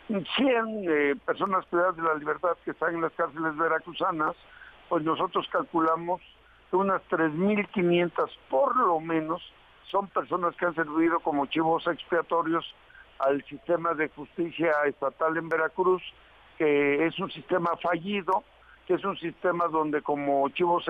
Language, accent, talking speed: Spanish, Mexican, 140 wpm